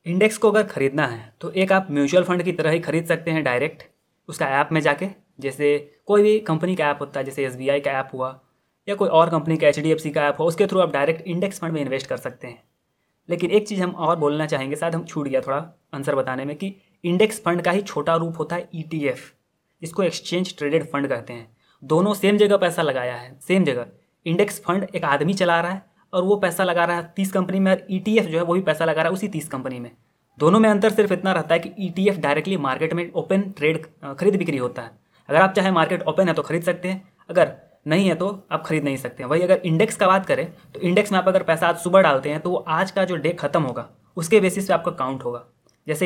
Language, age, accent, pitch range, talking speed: Hindi, 20-39, native, 145-185 Hz, 250 wpm